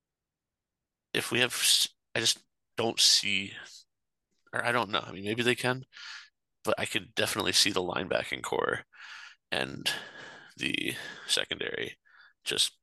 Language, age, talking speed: English, 30-49, 130 wpm